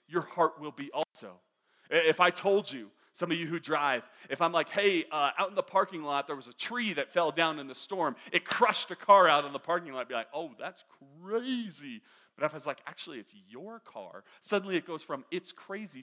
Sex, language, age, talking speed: male, English, 30-49, 240 wpm